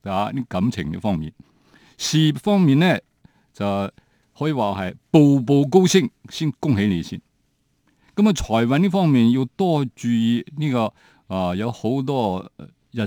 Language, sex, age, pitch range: Chinese, male, 50-69, 100-145 Hz